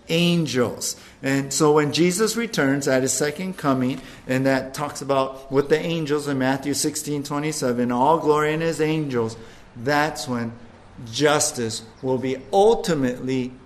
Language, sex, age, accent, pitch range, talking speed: English, male, 50-69, American, 130-170 Hz, 140 wpm